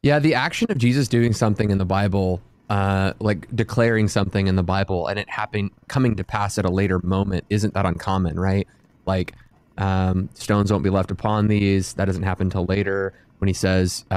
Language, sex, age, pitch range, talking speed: English, male, 20-39, 95-115 Hz, 195 wpm